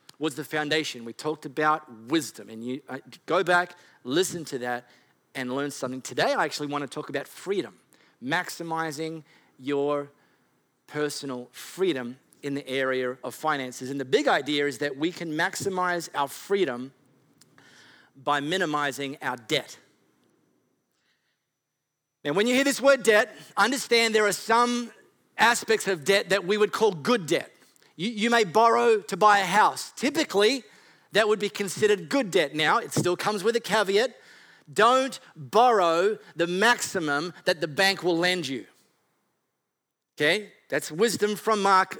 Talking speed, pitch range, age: 150 wpm, 145-210 Hz, 40-59